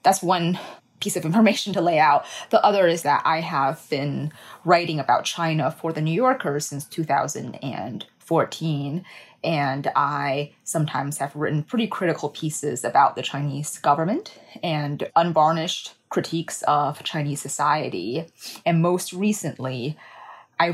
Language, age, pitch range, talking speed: English, 20-39, 145-180 Hz, 135 wpm